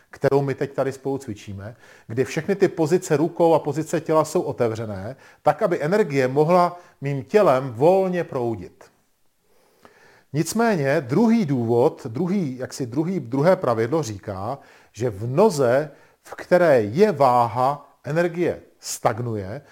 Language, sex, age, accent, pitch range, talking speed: Czech, male, 40-59, native, 120-160 Hz, 125 wpm